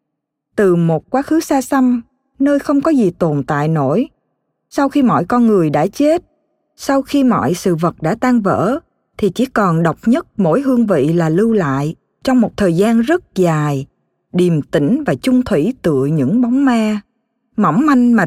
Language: Vietnamese